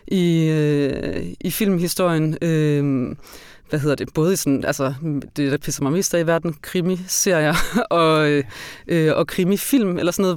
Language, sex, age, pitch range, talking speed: Danish, female, 30-49, 145-175 Hz, 160 wpm